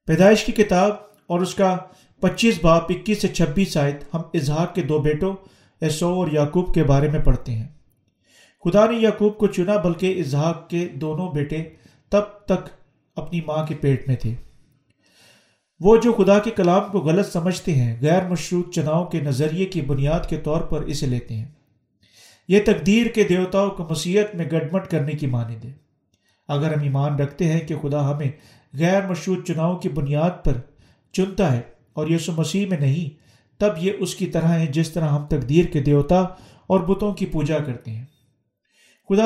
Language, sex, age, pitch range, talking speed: Urdu, male, 40-59, 145-185 Hz, 175 wpm